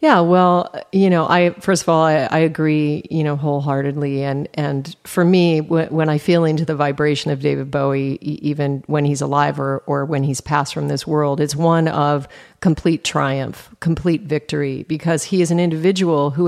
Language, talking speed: English, 190 wpm